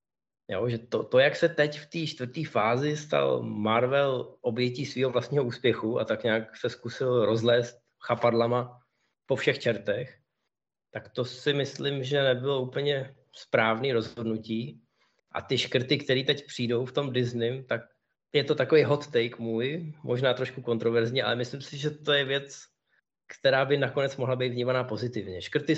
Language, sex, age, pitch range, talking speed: Czech, male, 20-39, 115-140 Hz, 165 wpm